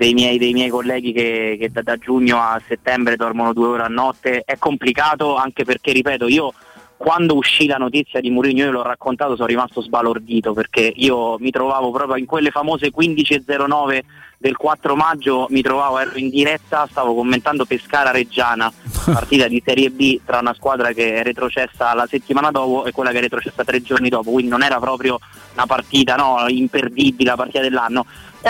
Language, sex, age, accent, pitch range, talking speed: Italian, male, 20-39, native, 120-140 Hz, 185 wpm